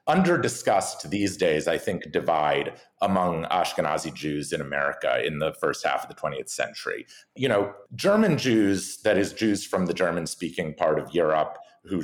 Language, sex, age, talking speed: English, male, 40-59, 165 wpm